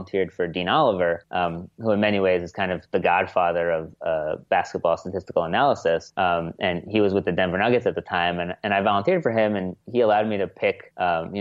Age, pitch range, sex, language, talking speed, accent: 30-49, 90-115 Hz, male, English, 230 wpm, American